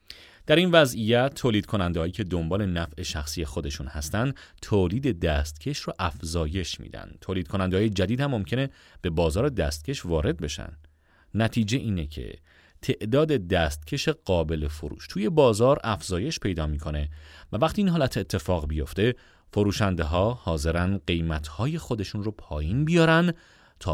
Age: 30-49